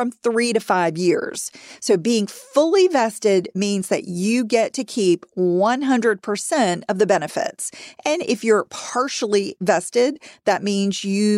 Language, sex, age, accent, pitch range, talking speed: English, female, 40-59, American, 195-245 Hz, 140 wpm